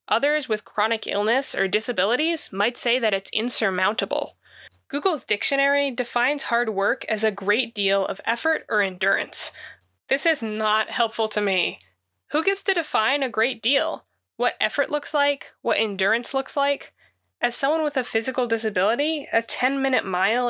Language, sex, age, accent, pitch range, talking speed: English, female, 10-29, American, 205-265 Hz, 160 wpm